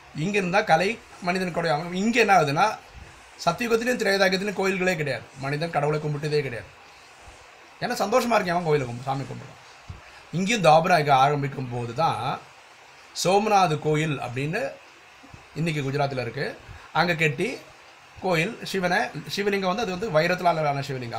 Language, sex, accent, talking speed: Tamil, male, native, 125 wpm